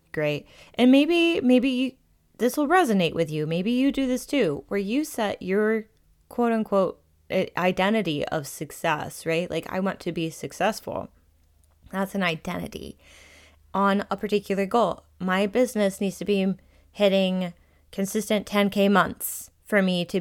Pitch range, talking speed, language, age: 140-205 Hz, 145 wpm, English, 20-39